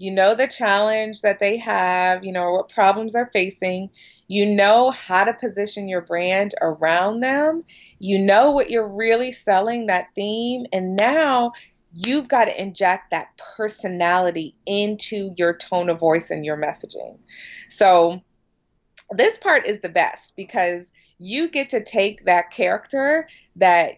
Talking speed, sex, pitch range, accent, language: 155 wpm, female, 185-245 Hz, American, English